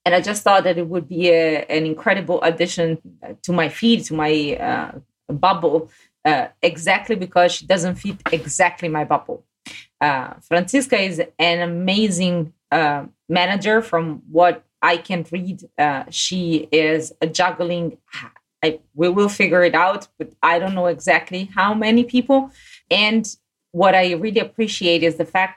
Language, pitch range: English, 160-195 Hz